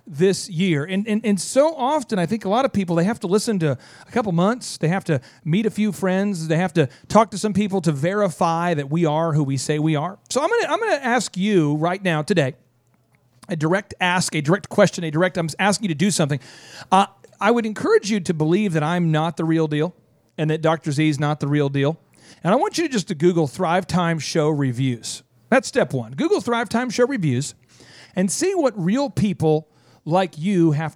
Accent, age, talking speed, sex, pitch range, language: American, 40-59, 230 wpm, male, 145-205 Hz, English